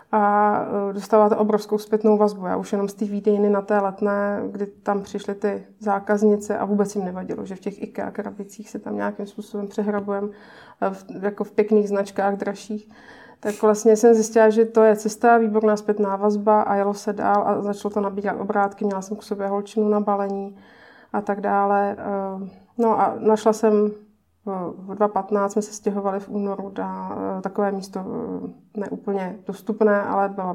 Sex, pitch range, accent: female, 195-215 Hz, native